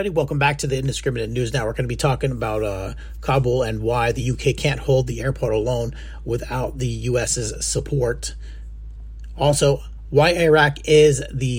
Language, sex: English, male